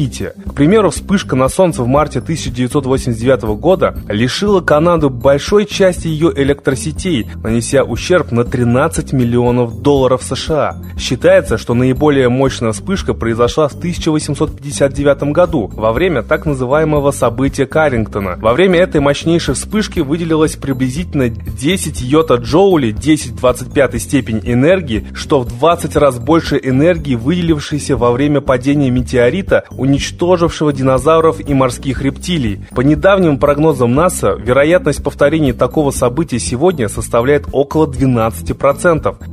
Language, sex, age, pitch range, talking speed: Russian, male, 20-39, 125-155 Hz, 120 wpm